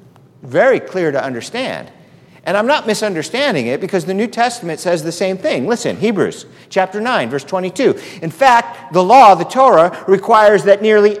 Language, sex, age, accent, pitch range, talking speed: English, male, 50-69, American, 155-230 Hz, 170 wpm